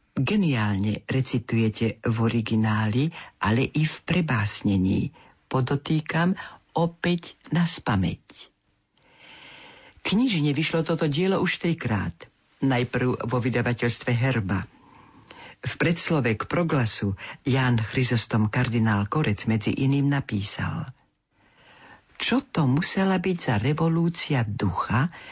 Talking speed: 95 wpm